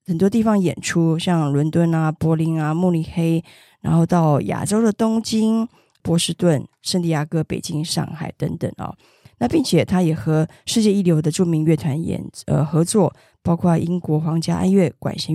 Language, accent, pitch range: Chinese, native, 160-200 Hz